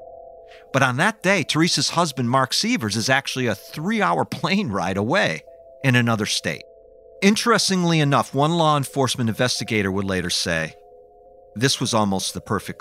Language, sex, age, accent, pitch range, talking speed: English, male, 50-69, American, 105-155 Hz, 150 wpm